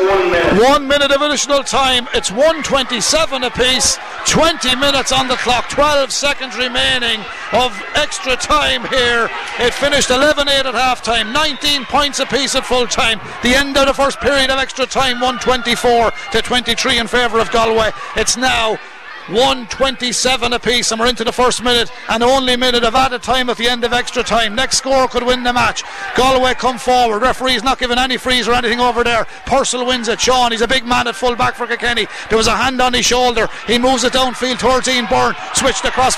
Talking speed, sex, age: 195 wpm, male, 60-79